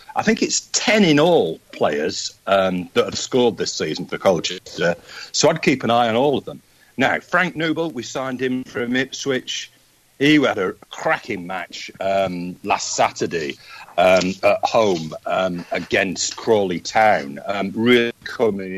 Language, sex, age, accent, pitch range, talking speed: English, male, 50-69, British, 100-155 Hz, 165 wpm